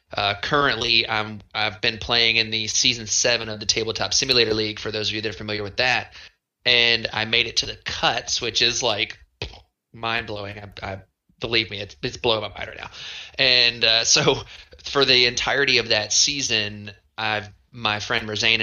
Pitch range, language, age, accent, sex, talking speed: 105-125 Hz, English, 20-39, American, male, 195 wpm